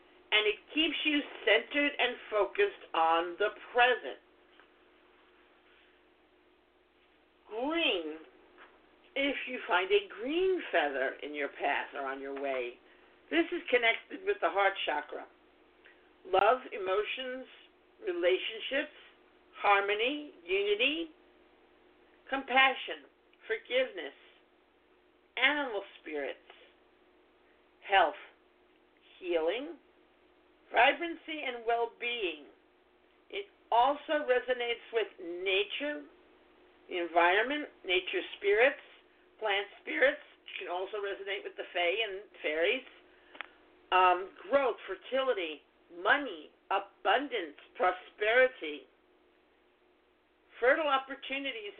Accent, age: American, 50-69